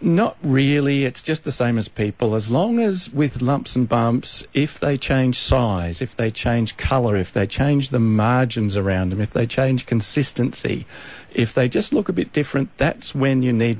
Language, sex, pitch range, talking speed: English, male, 105-140 Hz, 195 wpm